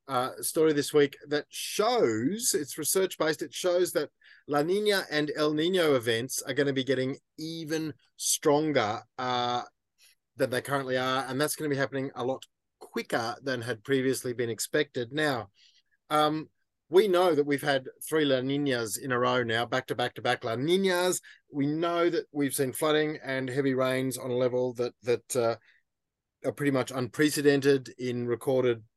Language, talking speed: English, 180 wpm